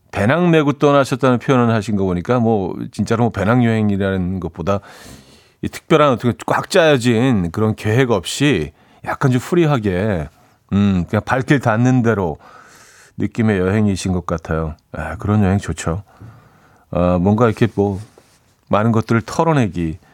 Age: 40-59